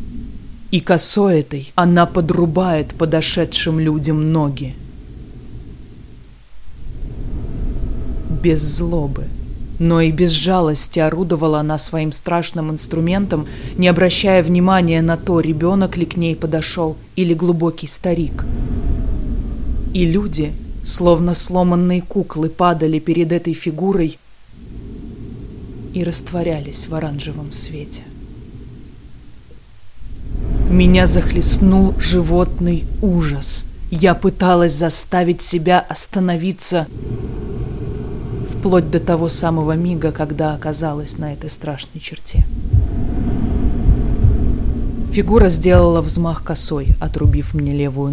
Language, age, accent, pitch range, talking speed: Russian, 20-39, native, 130-175 Hz, 90 wpm